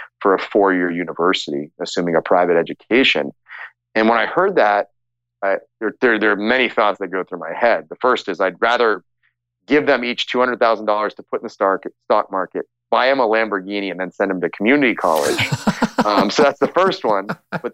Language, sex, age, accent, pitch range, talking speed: English, male, 30-49, American, 100-120 Hz, 195 wpm